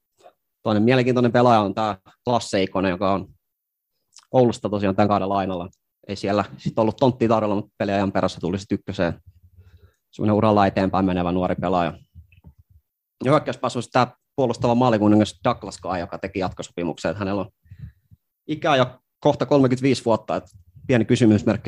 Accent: native